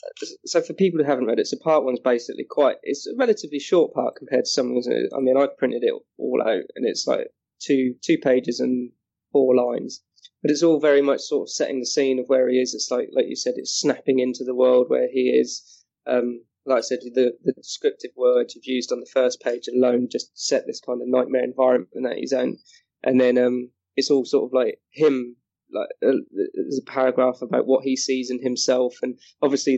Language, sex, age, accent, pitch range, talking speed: English, male, 20-39, British, 125-145 Hz, 225 wpm